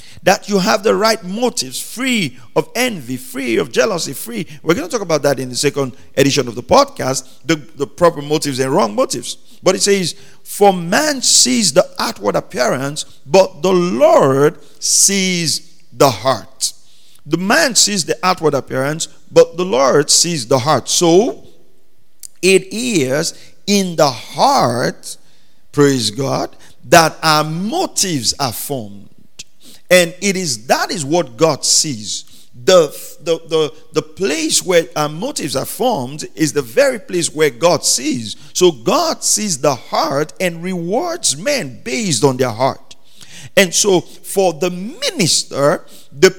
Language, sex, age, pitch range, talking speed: English, male, 50-69, 140-195 Hz, 150 wpm